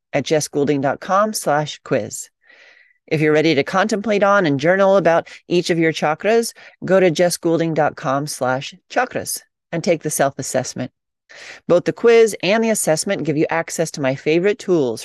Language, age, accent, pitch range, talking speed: English, 40-59, American, 150-195 Hz, 155 wpm